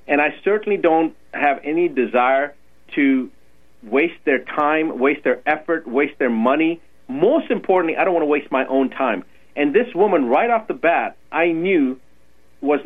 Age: 40-59